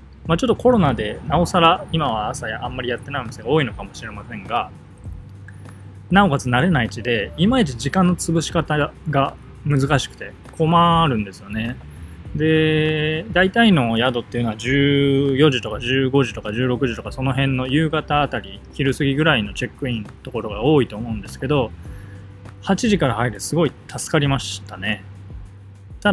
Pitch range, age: 105-150 Hz, 20-39